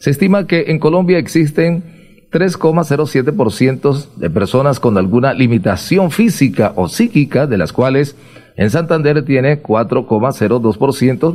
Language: Spanish